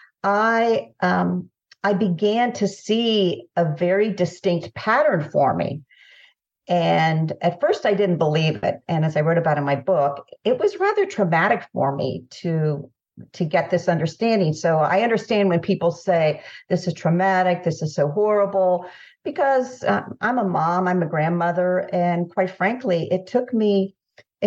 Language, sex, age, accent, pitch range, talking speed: English, female, 50-69, American, 165-205 Hz, 160 wpm